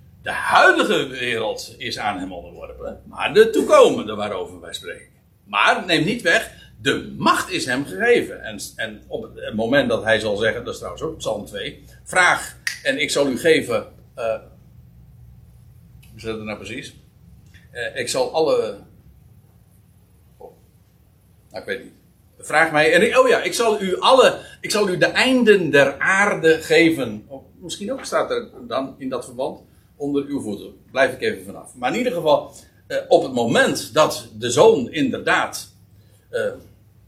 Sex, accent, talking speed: male, Dutch, 170 wpm